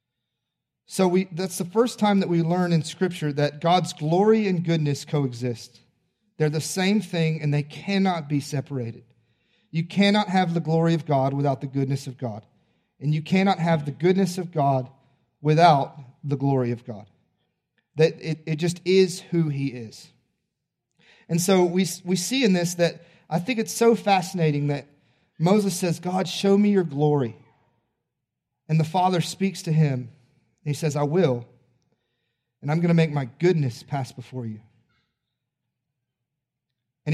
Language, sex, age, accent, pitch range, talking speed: English, male, 40-59, American, 135-180 Hz, 165 wpm